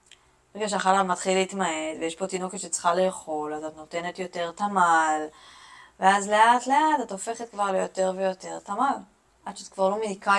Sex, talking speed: female, 155 wpm